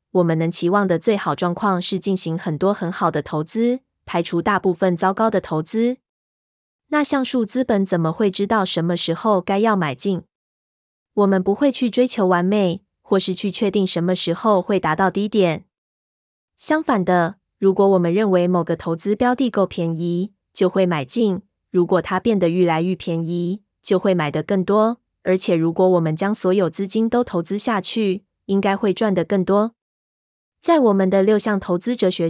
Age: 20-39